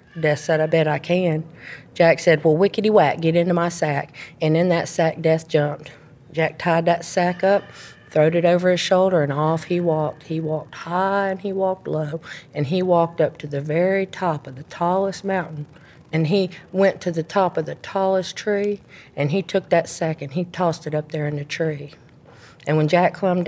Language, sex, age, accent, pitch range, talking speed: English, female, 50-69, American, 155-180 Hz, 205 wpm